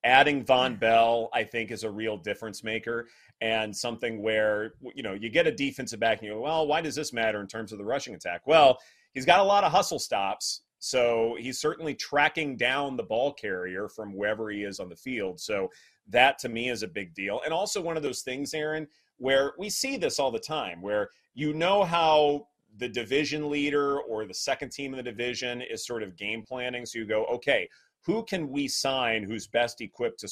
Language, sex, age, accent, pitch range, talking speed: English, male, 30-49, American, 110-145 Hz, 220 wpm